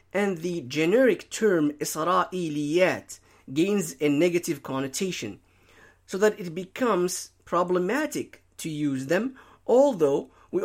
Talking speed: 105 wpm